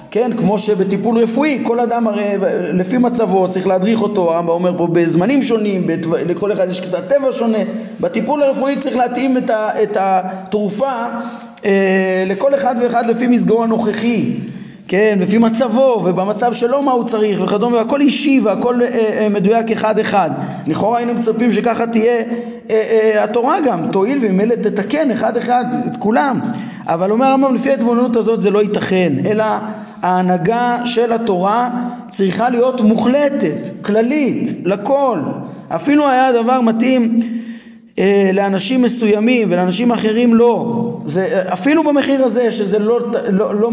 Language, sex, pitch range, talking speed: Hebrew, male, 205-245 Hz, 135 wpm